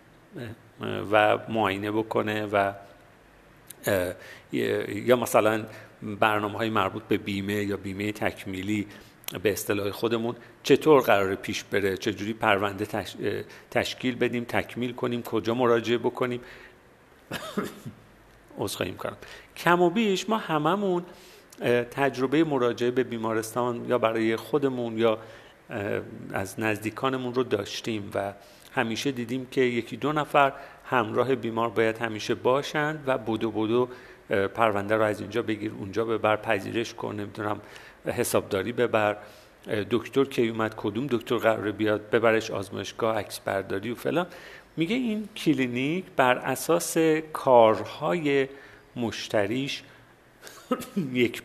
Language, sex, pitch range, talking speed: Persian, male, 105-130 Hz, 115 wpm